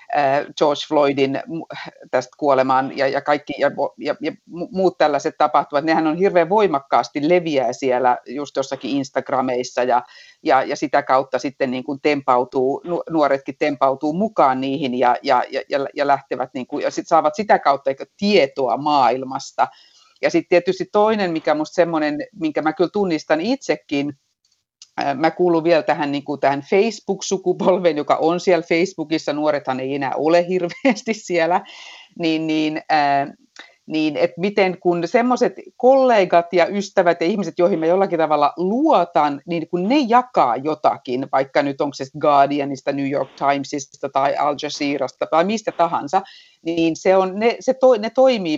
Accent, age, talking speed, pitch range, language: native, 50-69, 145 wpm, 140-180 Hz, Finnish